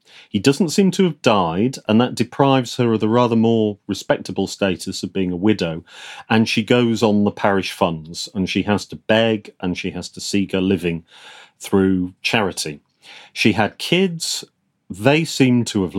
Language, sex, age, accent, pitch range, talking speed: English, male, 40-59, British, 95-130 Hz, 180 wpm